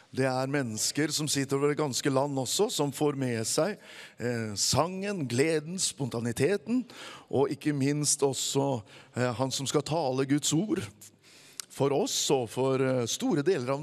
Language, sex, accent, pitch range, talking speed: English, male, Swedish, 120-155 Hz, 160 wpm